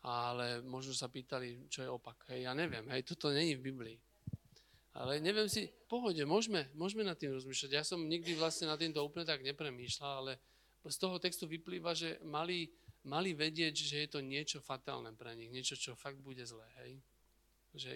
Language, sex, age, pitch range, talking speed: Slovak, male, 40-59, 130-170 Hz, 190 wpm